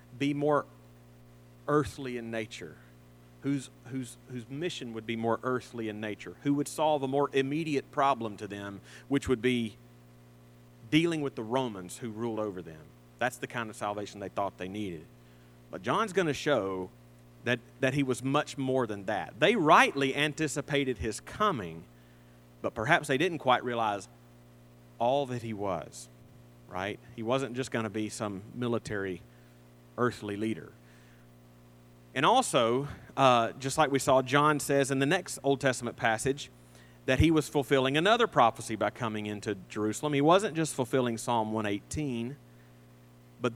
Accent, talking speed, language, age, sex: American, 160 wpm, English, 40-59, male